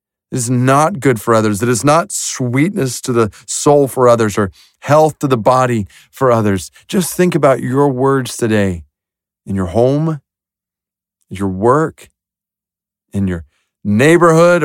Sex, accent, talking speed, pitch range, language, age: male, American, 150 wpm, 110-170 Hz, English, 40-59